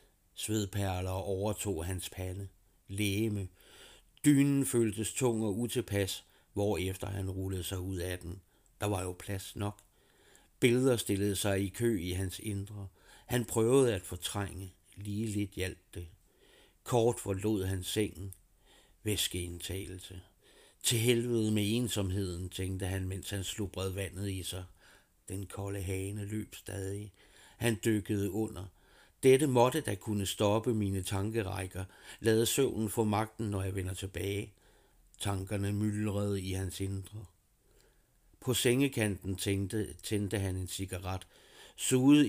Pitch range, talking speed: 95-110 Hz, 130 wpm